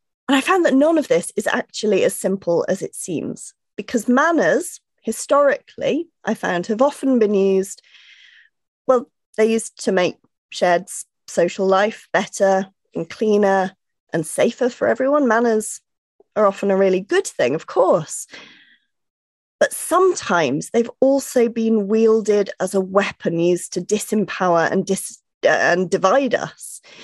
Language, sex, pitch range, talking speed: English, female, 190-265 Hz, 145 wpm